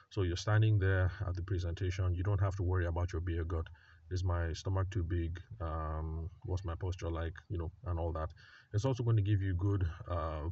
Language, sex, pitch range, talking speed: English, male, 85-100 Hz, 220 wpm